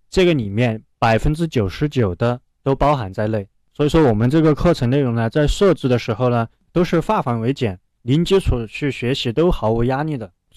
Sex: male